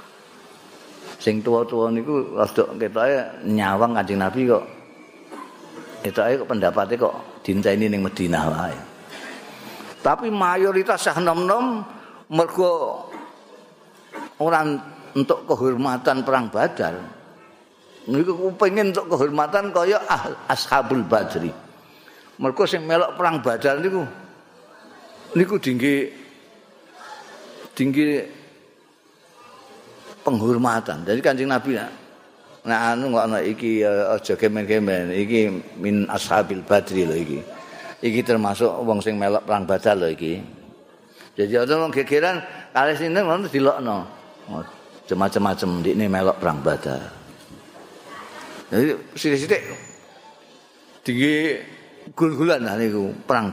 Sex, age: male, 50-69